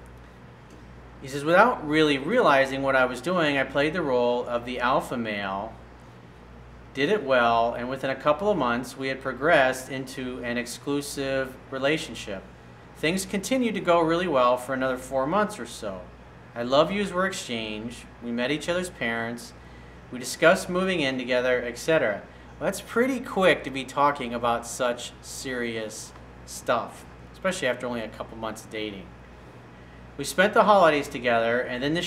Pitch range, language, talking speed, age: 115-150 Hz, English, 165 wpm, 40-59